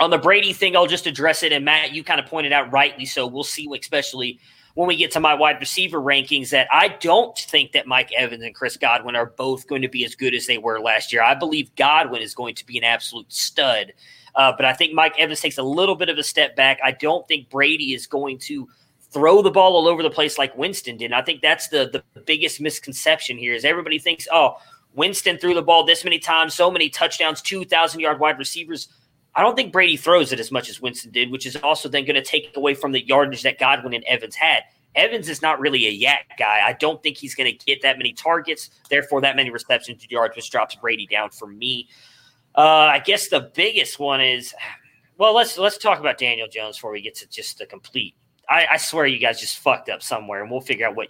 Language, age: English, 20-39